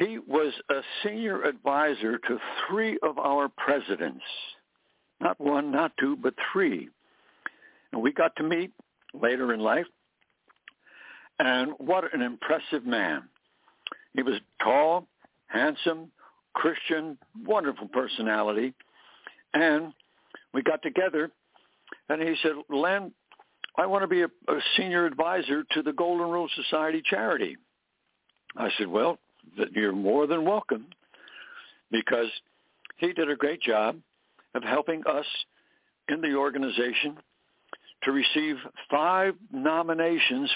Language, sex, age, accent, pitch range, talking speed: English, male, 60-79, American, 140-170 Hz, 120 wpm